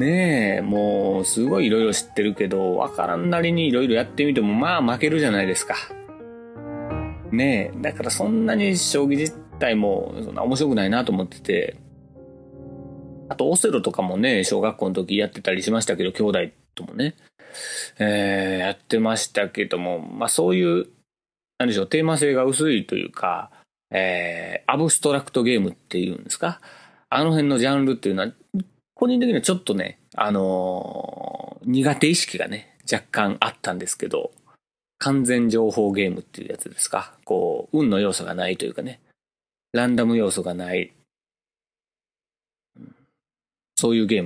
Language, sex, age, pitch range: Japanese, male, 30-49, 100-155 Hz